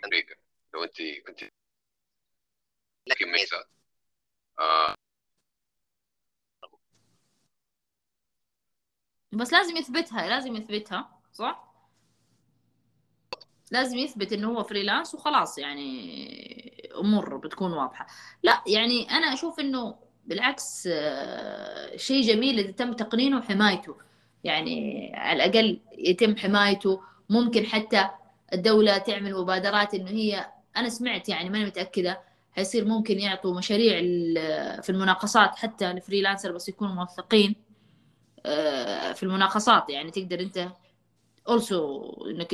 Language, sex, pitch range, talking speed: Arabic, female, 195-265 Hz, 90 wpm